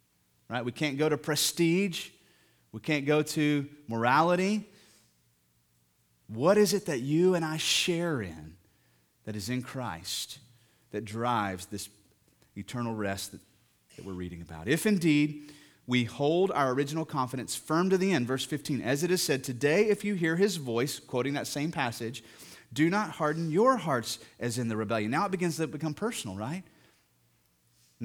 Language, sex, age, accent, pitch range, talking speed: English, male, 30-49, American, 110-160 Hz, 170 wpm